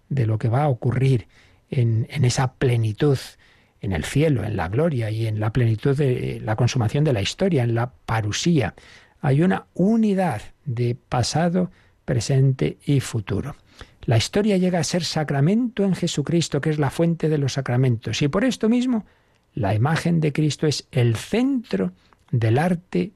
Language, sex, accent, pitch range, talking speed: Spanish, male, Spanish, 115-155 Hz, 170 wpm